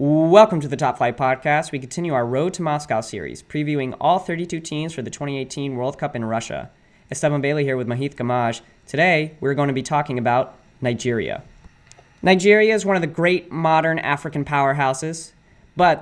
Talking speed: 180 wpm